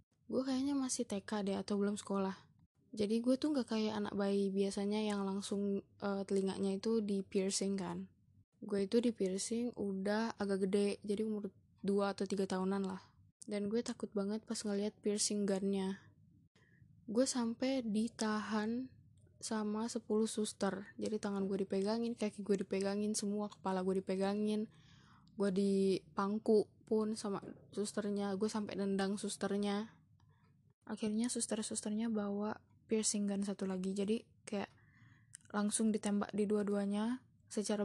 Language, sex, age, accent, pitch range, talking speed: Indonesian, female, 10-29, native, 195-215 Hz, 135 wpm